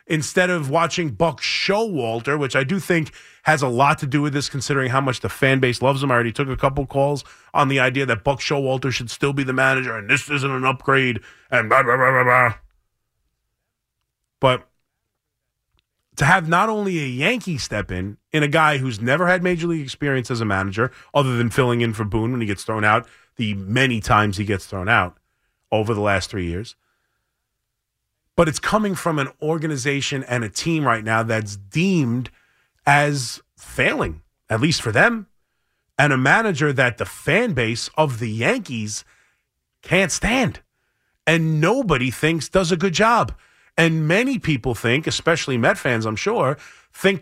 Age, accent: 30-49, American